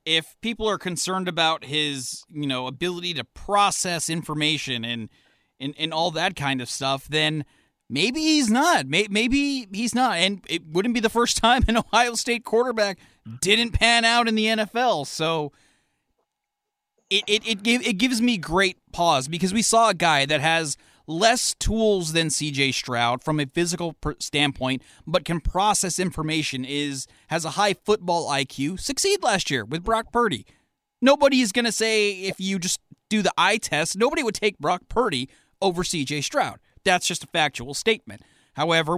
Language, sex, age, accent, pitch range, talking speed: English, male, 30-49, American, 145-210 Hz, 170 wpm